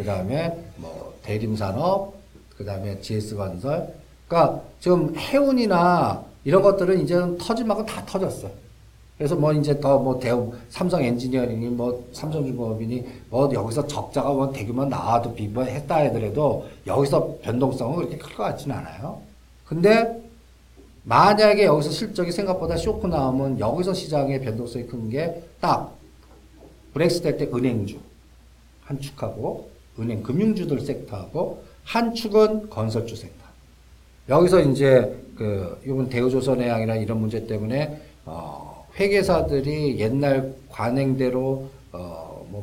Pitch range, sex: 115-175 Hz, male